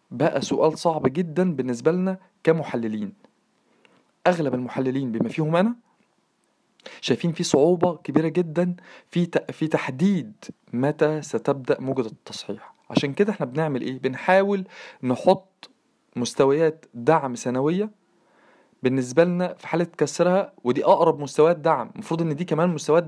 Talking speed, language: 125 wpm, Arabic